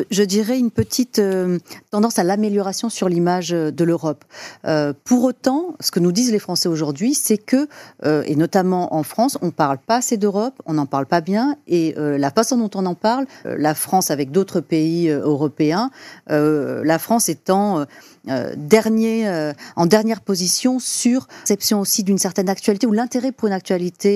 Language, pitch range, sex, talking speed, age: French, 155-215 Hz, female, 190 wpm, 40-59